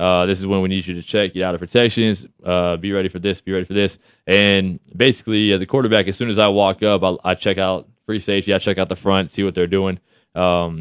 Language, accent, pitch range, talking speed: English, American, 95-105 Hz, 270 wpm